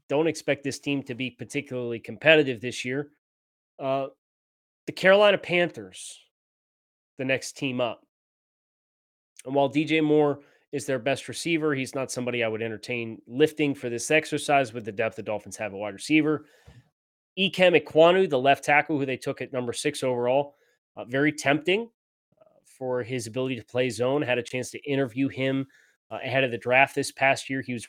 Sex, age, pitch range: male, 30-49, 120-145 Hz